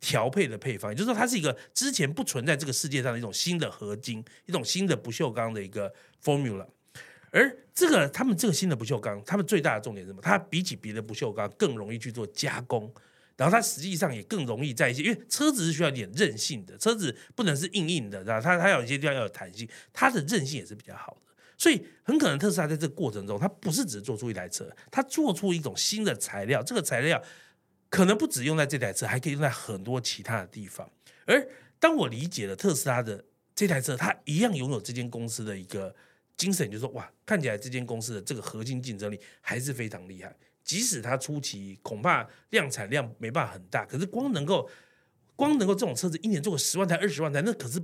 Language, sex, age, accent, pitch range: Chinese, male, 30-49, native, 115-190 Hz